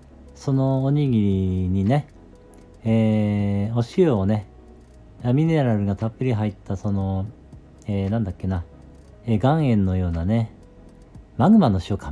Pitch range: 95-125 Hz